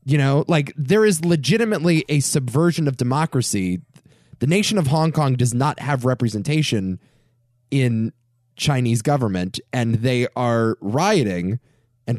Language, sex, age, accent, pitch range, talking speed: English, male, 20-39, American, 120-170 Hz, 135 wpm